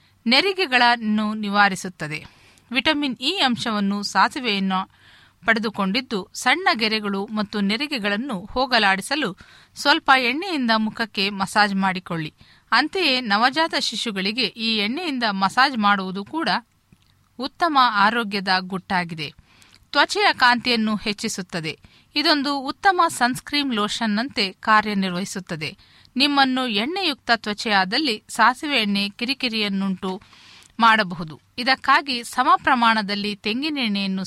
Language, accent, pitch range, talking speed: Kannada, native, 200-260 Hz, 80 wpm